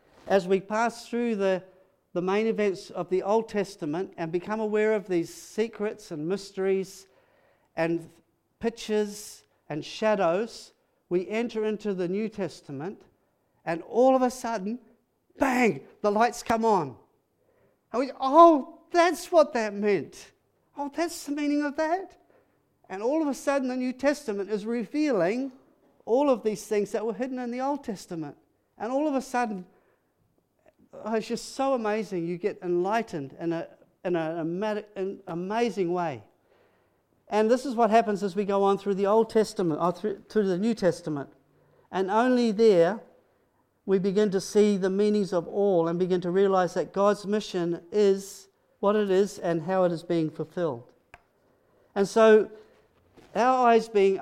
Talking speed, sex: 160 wpm, male